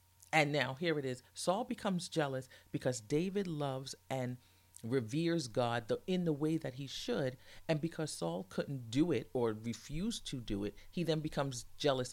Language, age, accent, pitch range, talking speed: English, 40-59, American, 100-155 Hz, 175 wpm